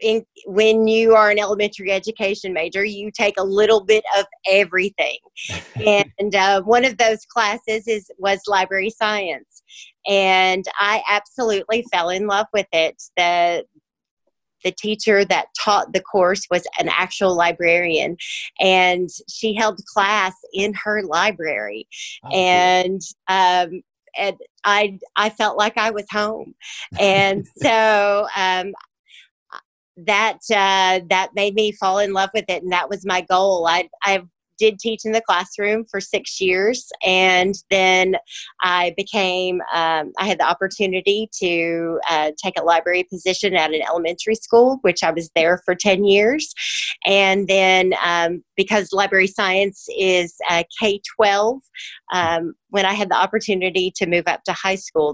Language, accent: English, American